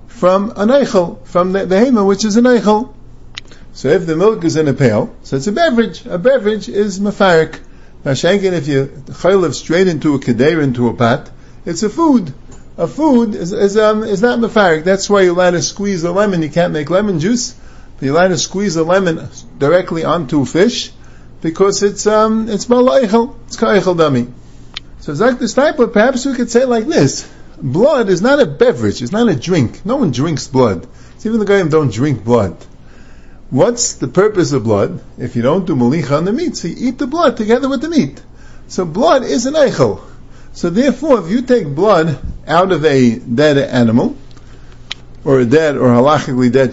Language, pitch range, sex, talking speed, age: English, 145-220 Hz, male, 205 wpm, 50-69